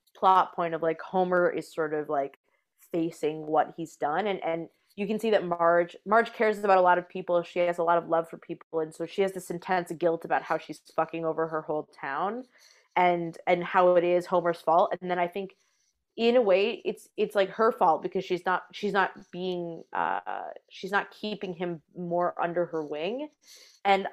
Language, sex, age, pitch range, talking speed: English, female, 20-39, 170-195 Hz, 210 wpm